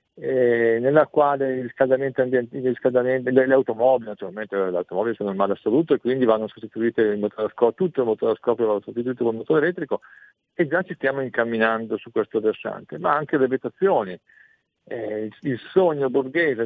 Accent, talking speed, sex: native, 175 wpm, male